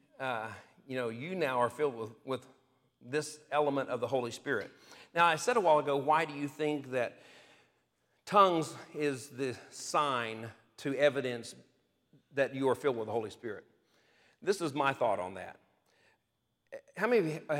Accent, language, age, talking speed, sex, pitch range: American, English, 50-69, 170 wpm, male, 120-160 Hz